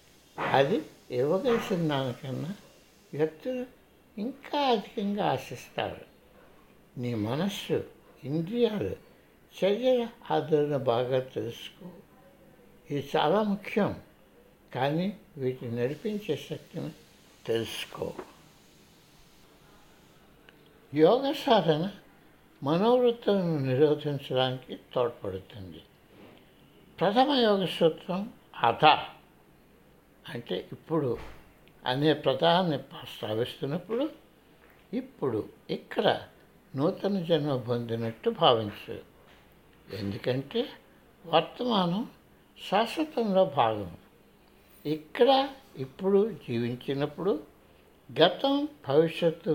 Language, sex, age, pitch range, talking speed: Telugu, male, 60-79, 130-205 Hz, 60 wpm